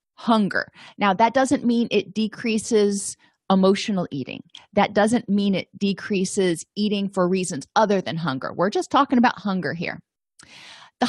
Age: 40-59